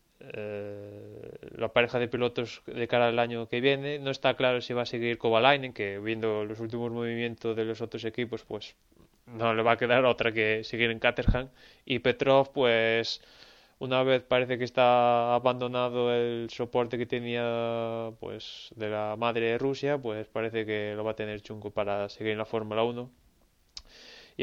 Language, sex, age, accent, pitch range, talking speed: Spanish, male, 20-39, Spanish, 115-130 Hz, 180 wpm